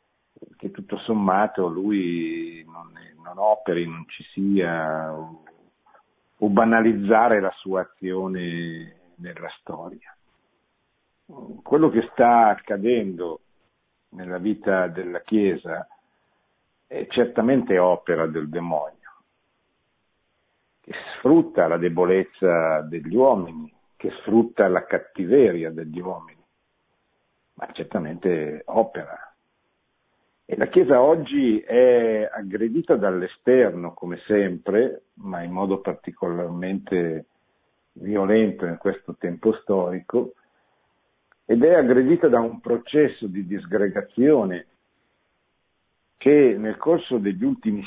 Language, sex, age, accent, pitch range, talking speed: Italian, male, 50-69, native, 90-115 Hz, 95 wpm